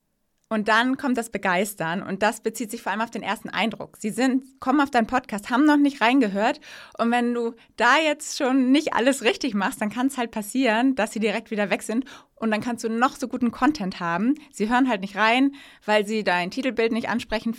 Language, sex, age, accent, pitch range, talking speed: German, female, 20-39, German, 200-250 Hz, 225 wpm